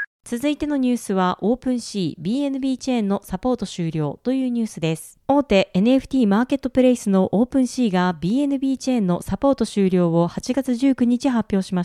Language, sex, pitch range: Japanese, female, 195-270 Hz